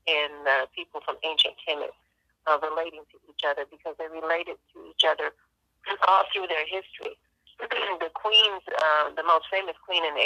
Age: 40-59